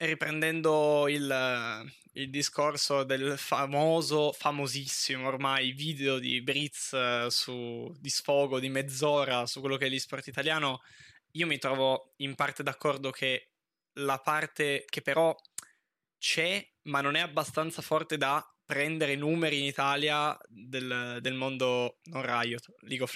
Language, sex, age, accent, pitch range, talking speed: Italian, male, 20-39, native, 130-155 Hz, 130 wpm